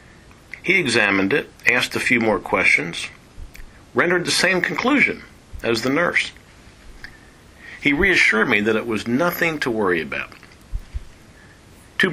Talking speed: 130 wpm